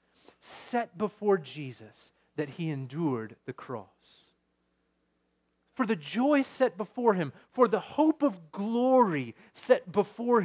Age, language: 30-49, English